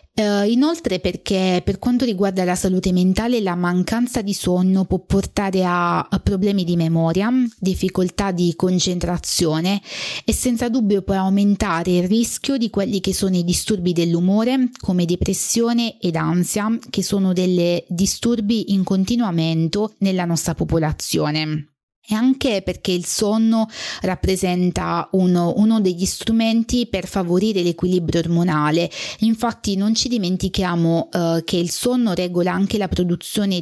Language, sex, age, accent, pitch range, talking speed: Italian, female, 20-39, native, 175-210 Hz, 135 wpm